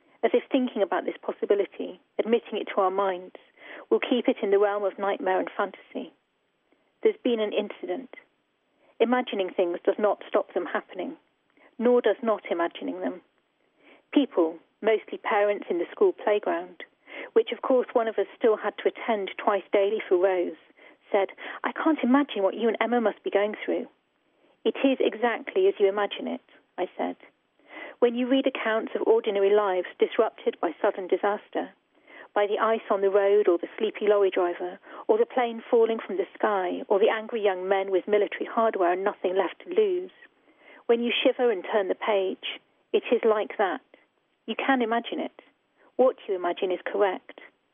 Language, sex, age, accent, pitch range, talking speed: English, female, 40-59, British, 200-270 Hz, 175 wpm